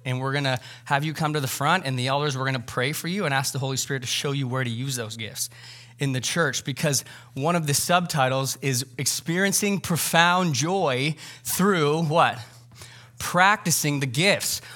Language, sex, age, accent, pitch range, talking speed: English, male, 20-39, American, 125-155 Hz, 190 wpm